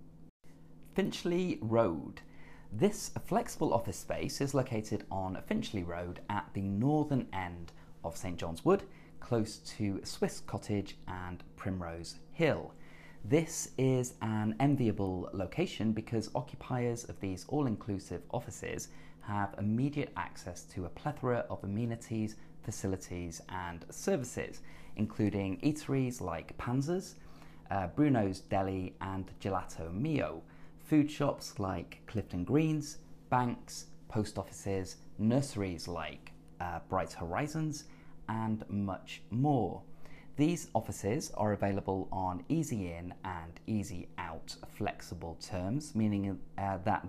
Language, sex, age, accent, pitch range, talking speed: English, male, 30-49, British, 85-115 Hz, 115 wpm